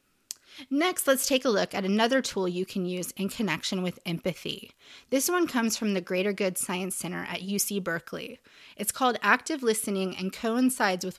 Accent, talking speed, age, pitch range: American, 180 wpm, 20-39, 185-240 Hz